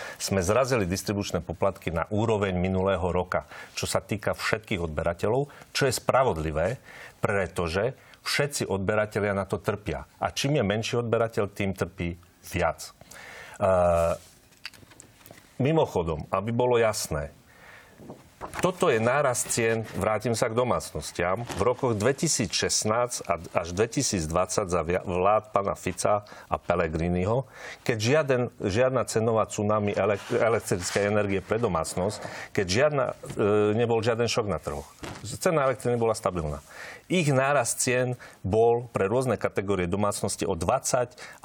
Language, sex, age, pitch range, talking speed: Slovak, male, 40-59, 95-115 Hz, 120 wpm